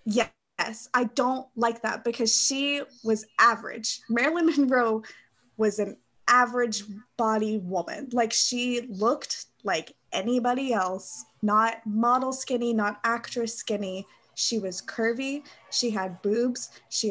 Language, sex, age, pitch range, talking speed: English, female, 20-39, 210-250 Hz, 125 wpm